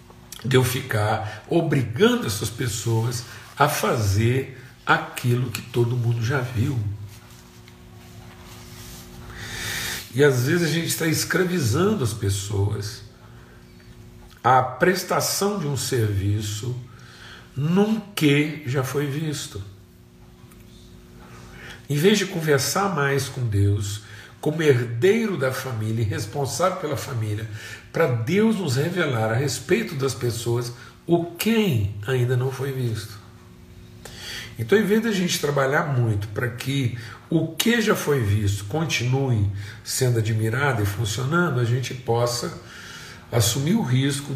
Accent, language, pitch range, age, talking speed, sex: Brazilian, Portuguese, 110-145 Hz, 60-79, 120 wpm, male